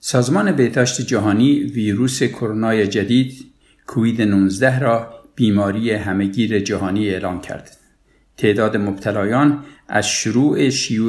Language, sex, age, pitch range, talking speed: English, male, 60-79, 100-120 Hz, 105 wpm